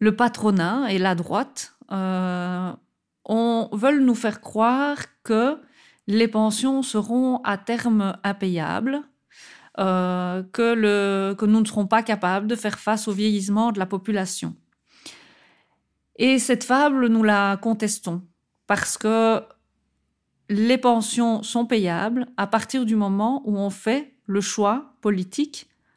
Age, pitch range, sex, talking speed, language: 40-59, 200-230 Hz, female, 125 wpm, Dutch